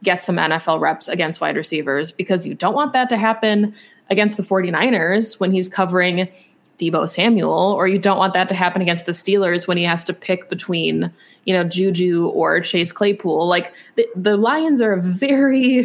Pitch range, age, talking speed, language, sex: 170-200 Hz, 20-39, 195 wpm, English, female